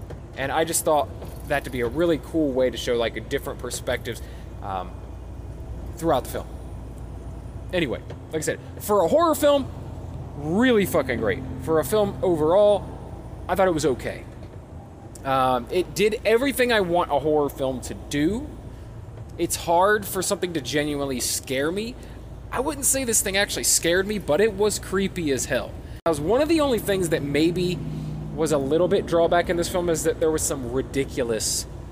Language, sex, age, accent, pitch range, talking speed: English, male, 20-39, American, 115-175 Hz, 180 wpm